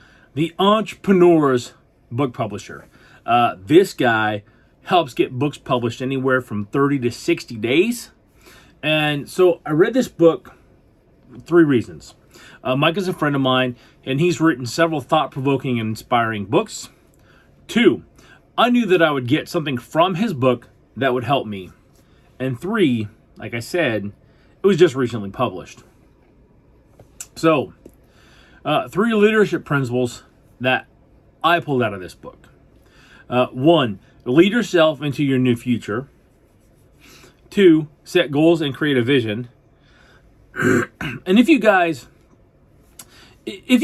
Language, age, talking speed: English, 40-59, 135 wpm